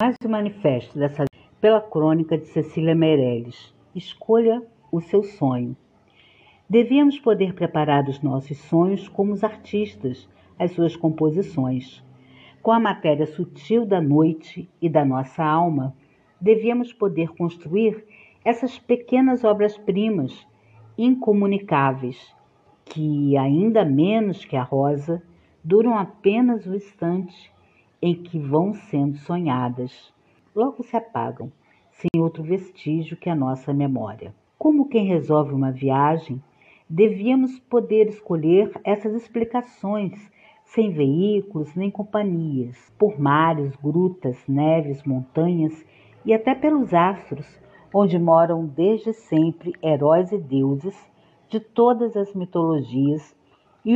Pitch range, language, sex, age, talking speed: 145-210 Hz, Portuguese, female, 50-69, 115 wpm